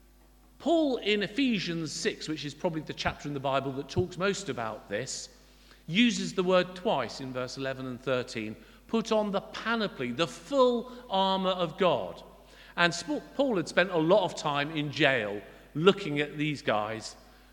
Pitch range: 135-180 Hz